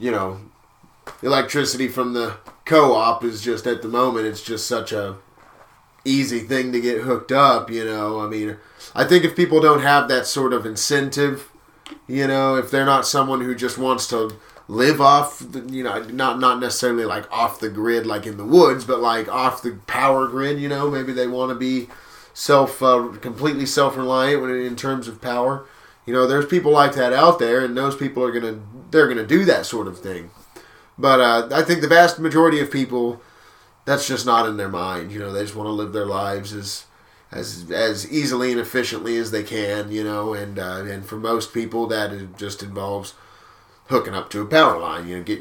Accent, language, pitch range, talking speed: American, English, 105-135 Hz, 205 wpm